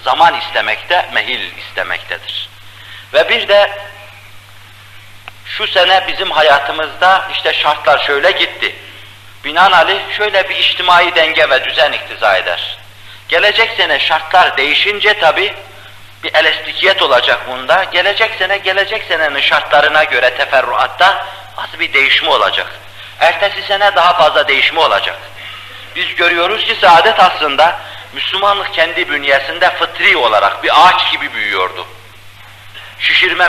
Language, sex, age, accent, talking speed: Turkish, male, 50-69, native, 115 wpm